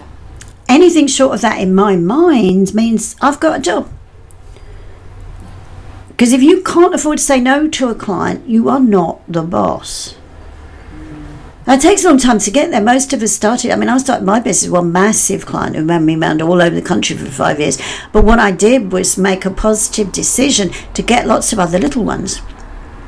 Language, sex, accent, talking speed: English, female, British, 200 wpm